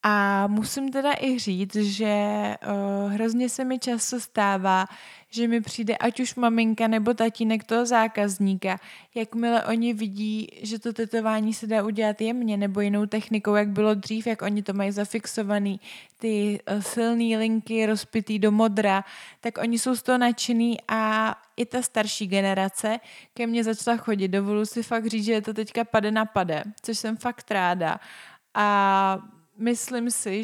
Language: Czech